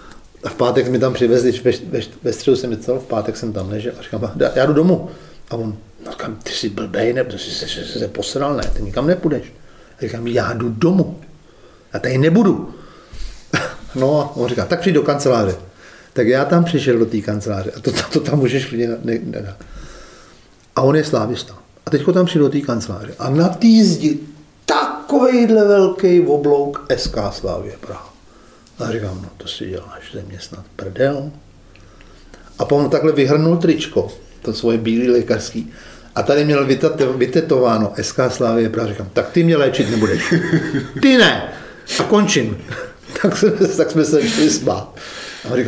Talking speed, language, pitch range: 170 wpm, Czech, 115-155 Hz